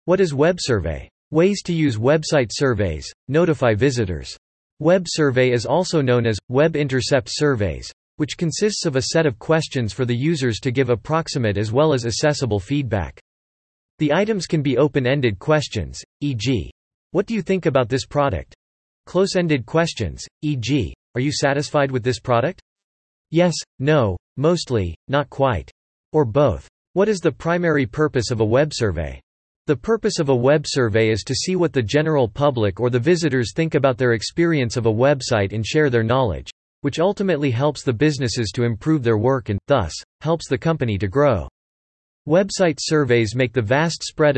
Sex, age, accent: male, 40-59, American